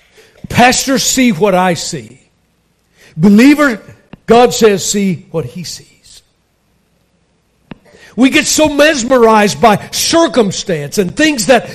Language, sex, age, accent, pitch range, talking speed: English, male, 60-79, American, 170-235 Hz, 105 wpm